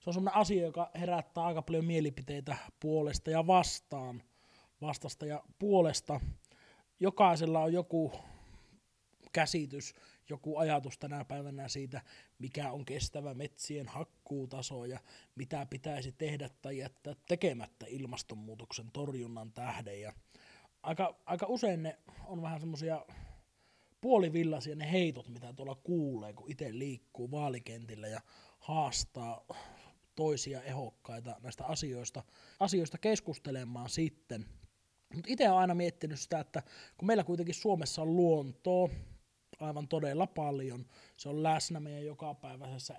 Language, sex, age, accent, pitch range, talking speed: Finnish, male, 30-49, native, 130-165 Hz, 120 wpm